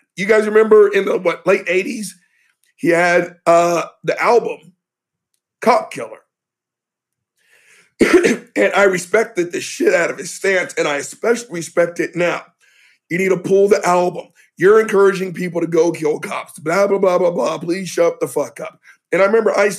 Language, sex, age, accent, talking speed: English, male, 50-69, American, 175 wpm